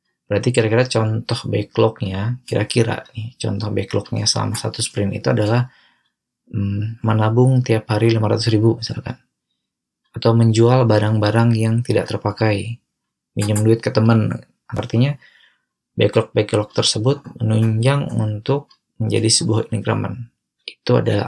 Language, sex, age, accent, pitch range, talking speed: Indonesian, male, 20-39, native, 105-125 Hz, 115 wpm